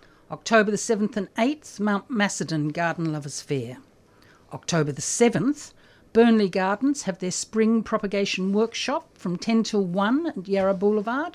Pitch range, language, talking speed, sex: 170-225 Hz, English, 145 wpm, female